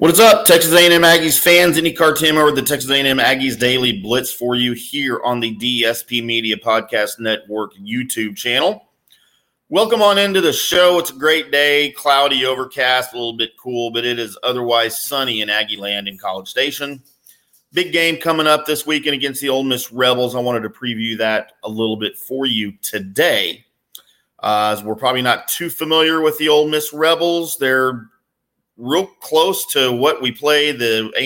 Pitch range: 115-150 Hz